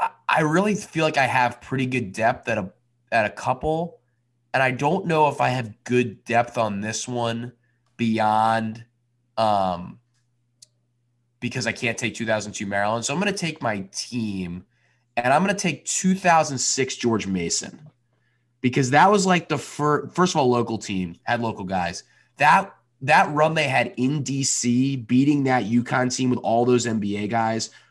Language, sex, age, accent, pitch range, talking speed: English, male, 20-39, American, 110-130 Hz, 170 wpm